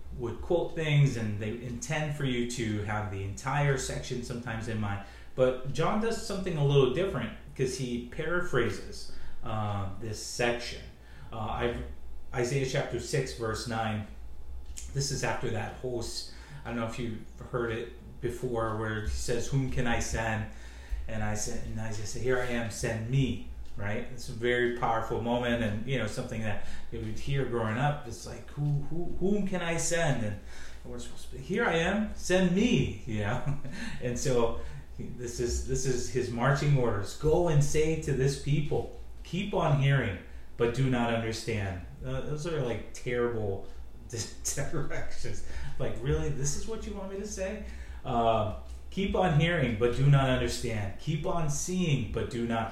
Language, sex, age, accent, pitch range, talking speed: English, male, 30-49, American, 110-140 Hz, 175 wpm